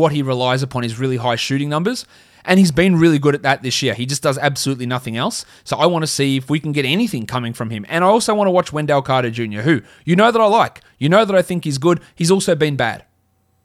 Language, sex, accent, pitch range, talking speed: English, male, Australian, 115-155 Hz, 275 wpm